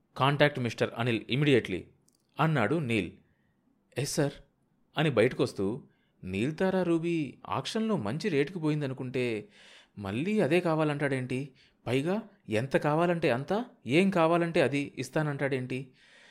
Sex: male